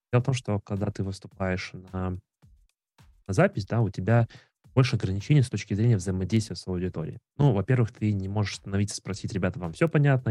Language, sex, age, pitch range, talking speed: Russian, male, 20-39, 95-120 Hz, 185 wpm